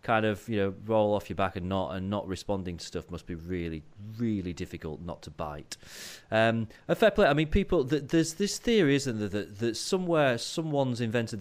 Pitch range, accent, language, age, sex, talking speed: 95-120 Hz, British, English, 30-49, male, 210 wpm